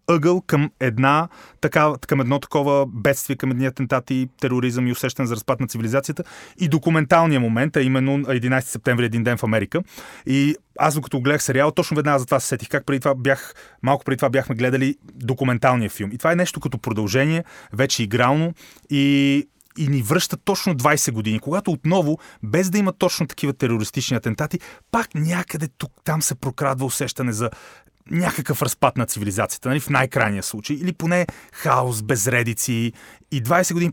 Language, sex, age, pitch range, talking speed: Bulgarian, male, 30-49, 120-150 Hz, 175 wpm